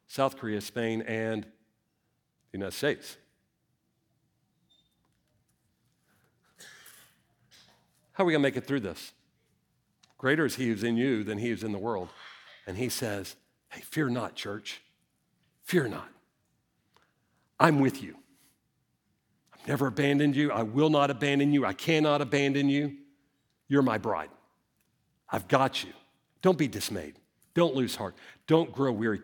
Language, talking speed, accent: English, 140 wpm, American